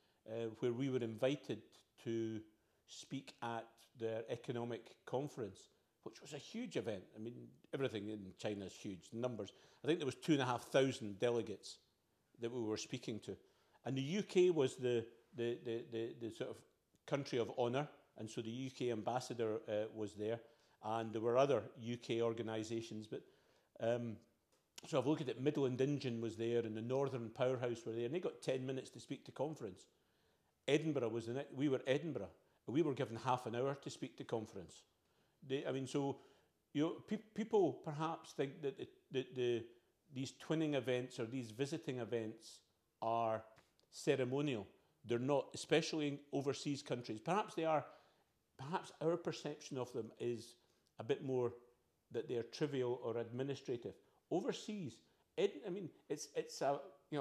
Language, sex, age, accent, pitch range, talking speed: English, male, 50-69, British, 115-140 Hz, 170 wpm